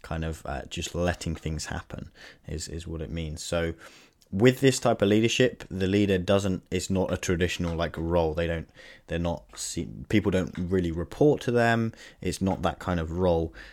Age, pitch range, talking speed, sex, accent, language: 20-39, 85-100 Hz, 190 wpm, male, British, English